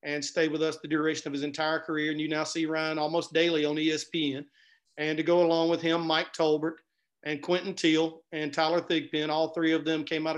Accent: American